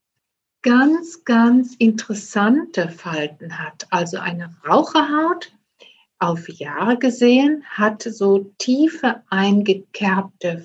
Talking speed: 85 wpm